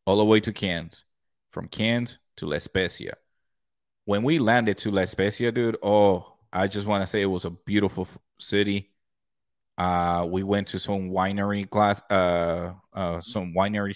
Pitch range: 95-105 Hz